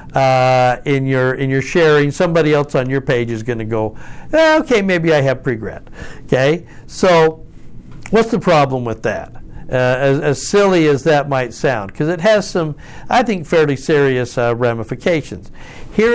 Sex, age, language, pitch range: male, 60-79, English, 130-165 Hz